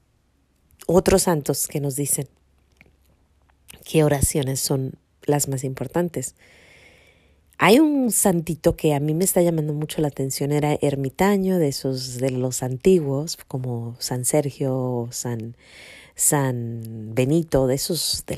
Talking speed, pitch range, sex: 125 wpm, 130-165 Hz, female